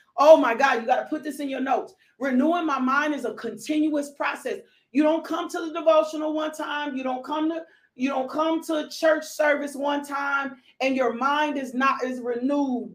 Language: English